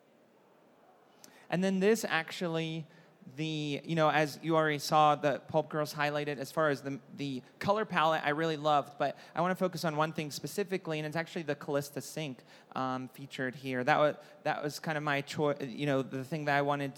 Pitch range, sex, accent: 135-155 Hz, male, American